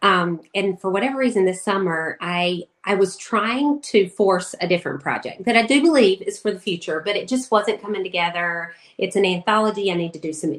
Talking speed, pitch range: 215 wpm, 170-210 Hz